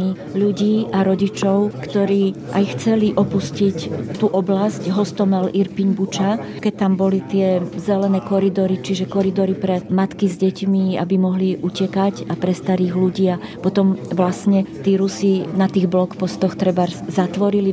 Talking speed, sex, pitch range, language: 140 wpm, female, 185-200 Hz, Slovak